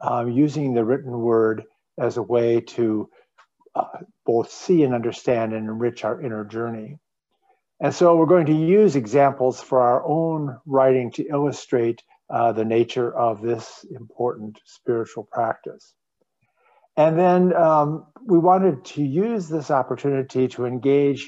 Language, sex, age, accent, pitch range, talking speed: English, male, 50-69, American, 120-155 Hz, 145 wpm